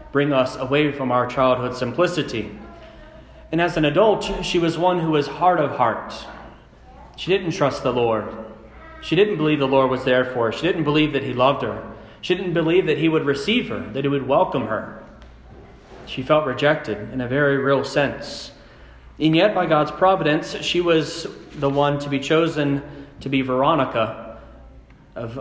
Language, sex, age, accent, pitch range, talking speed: English, male, 30-49, American, 135-165 Hz, 180 wpm